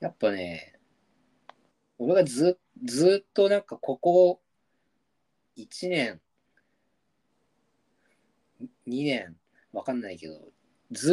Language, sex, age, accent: Japanese, male, 40-59, native